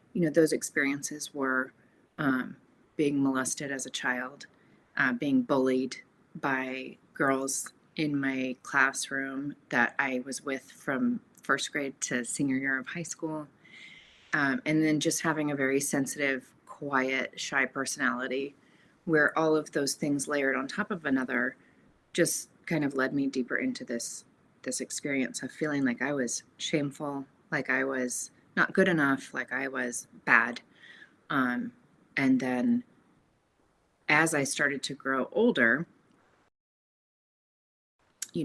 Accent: American